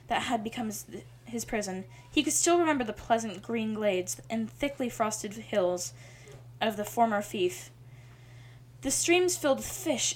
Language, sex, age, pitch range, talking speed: English, female, 10-29, 195-250 Hz, 160 wpm